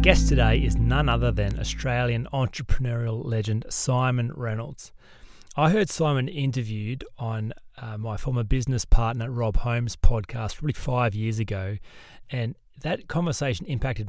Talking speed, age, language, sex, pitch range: 135 wpm, 30-49, English, male, 110-130 Hz